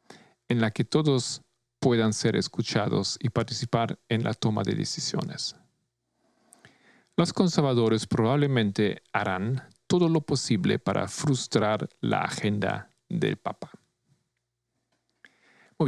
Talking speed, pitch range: 105 wpm, 105-125 Hz